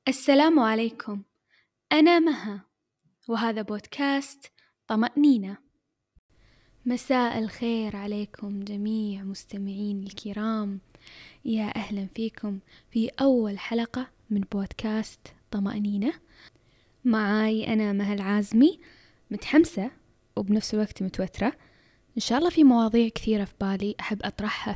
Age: 10-29